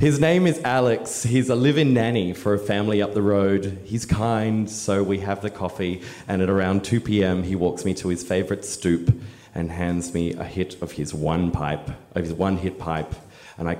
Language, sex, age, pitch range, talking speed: English, male, 30-49, 90-120 Hz, 220 wpm